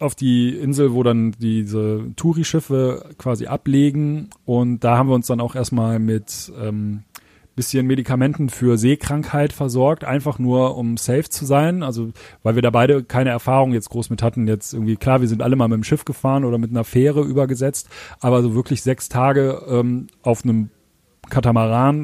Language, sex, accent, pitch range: German, male, German, 120-140 Hz